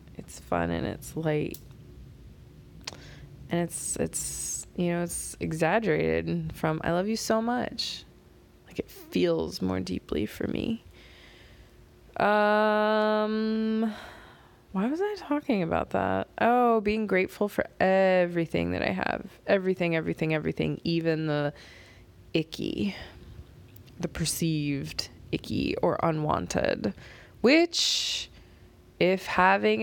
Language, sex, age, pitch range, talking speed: English, female, 20-39, 150-210 Hz, 110 wpm